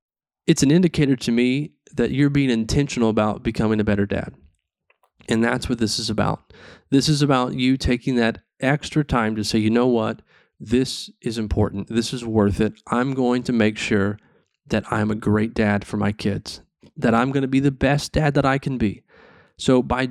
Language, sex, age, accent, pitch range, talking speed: English, male, 30-49, American, 105-130 Hz, 200 wpm